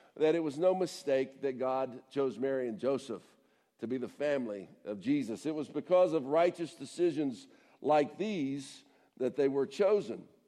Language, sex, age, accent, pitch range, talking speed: English, male, 60-79, American, 135-190 Hz, 165 wpm